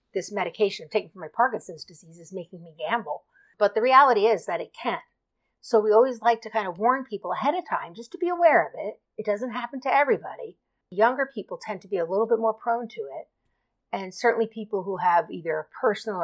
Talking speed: 230 wpm